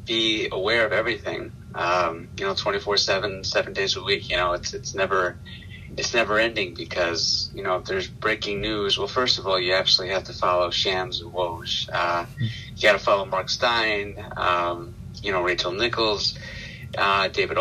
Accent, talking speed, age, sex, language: American, 185 wpm, 30-49, male, English